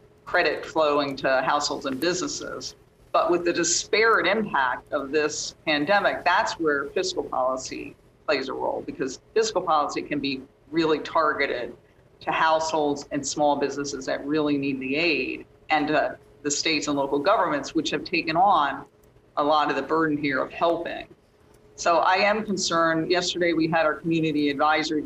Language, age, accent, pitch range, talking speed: English, 50-69, American, 140-160 Hz, 160 wpm